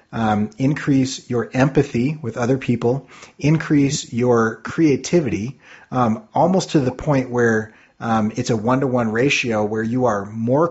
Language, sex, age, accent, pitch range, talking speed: English, male, 30-49, American, 110-130 Hz, 140 wpm